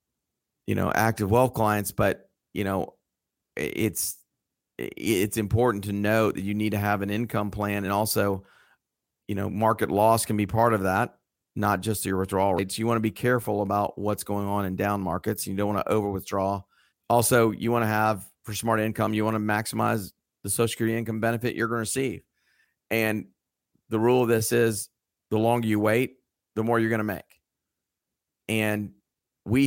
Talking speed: 190 wpm